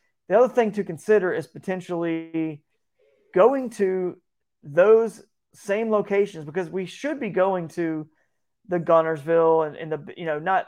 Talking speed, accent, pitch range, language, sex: 145 wpm, American, 165-195 Hz, English, male